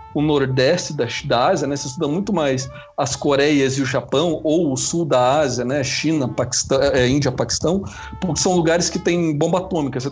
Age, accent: 40-59, Brazilian